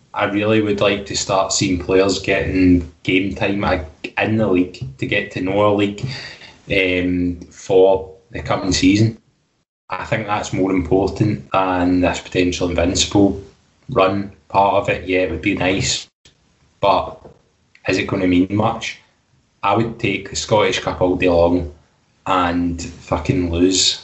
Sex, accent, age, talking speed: male, British, 10-29, 150 wpm